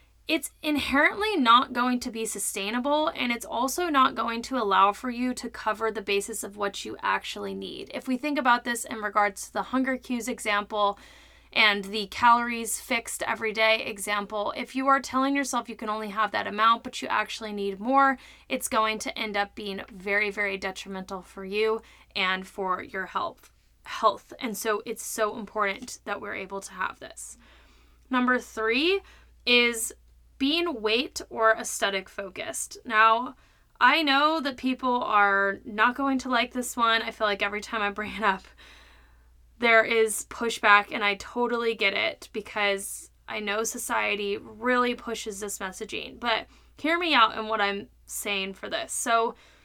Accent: American